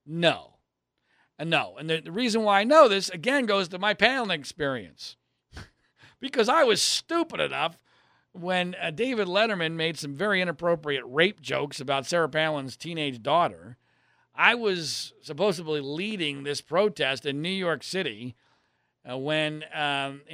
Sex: male